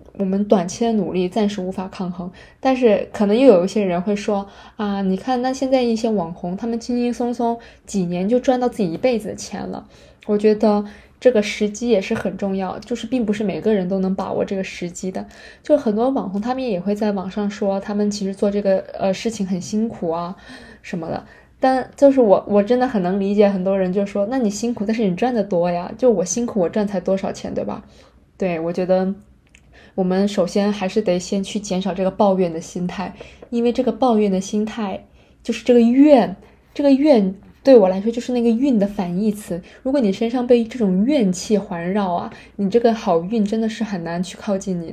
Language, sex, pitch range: Chinese, female, 190-230 Hz